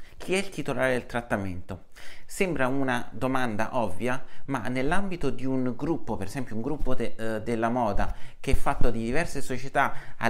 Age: 30-49